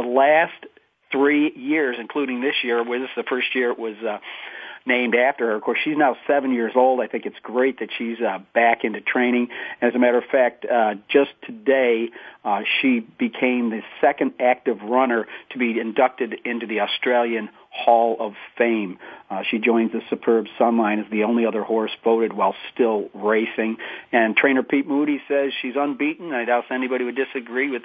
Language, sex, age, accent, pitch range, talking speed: English, male, 40-59, American, 115-140 Hz, 185 wpm